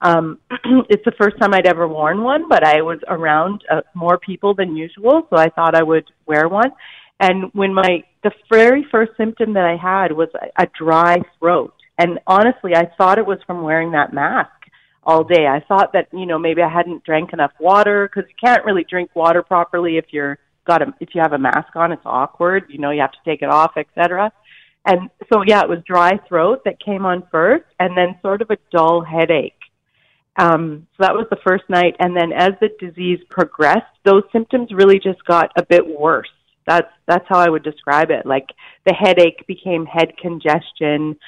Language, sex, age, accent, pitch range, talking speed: English, female, 40-59, American, 165-200 Hz, 210 wpm